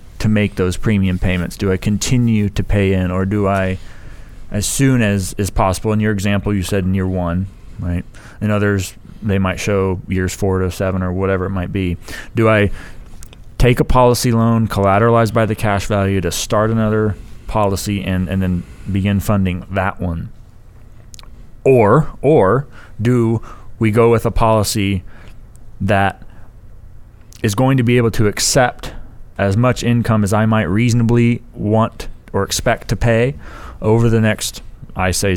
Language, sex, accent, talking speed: English, male, American, 165 wpm